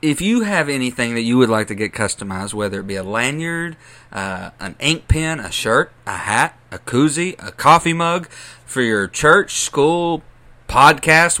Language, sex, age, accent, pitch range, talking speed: English, male, 30-49, American, 110-150 Hz, 180 wpm